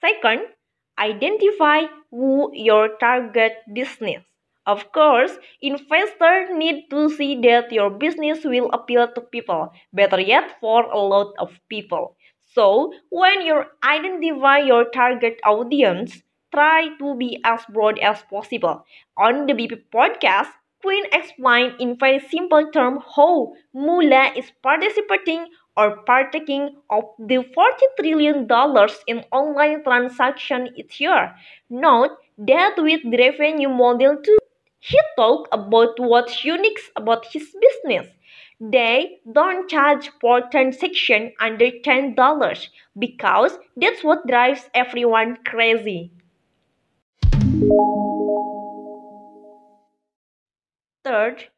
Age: 20-39